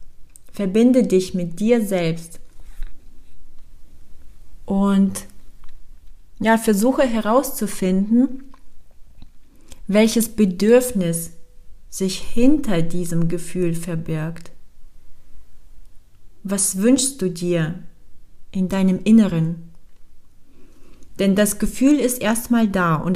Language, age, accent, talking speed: English, 40-59, German, 80 wpm